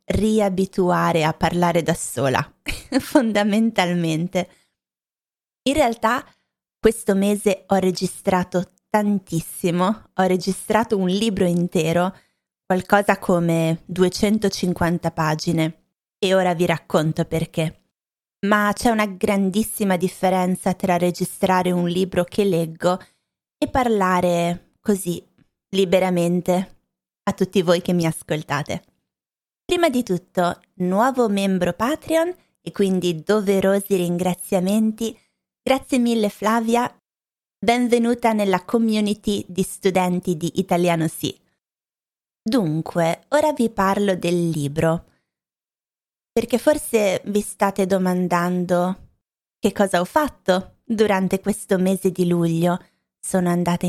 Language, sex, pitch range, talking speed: Italian, female, 175-210 Hz, 100 wpm